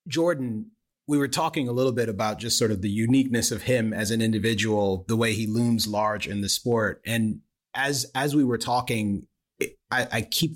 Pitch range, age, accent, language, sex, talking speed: 100-120 Hz, 30-49, American, English, male, 200 wpm